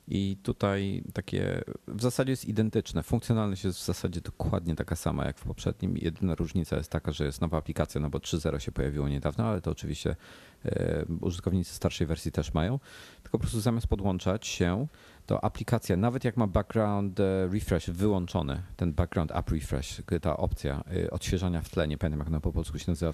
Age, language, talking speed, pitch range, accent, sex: 40-59, Polish, 180 wpm, 80-105 Hz, native, male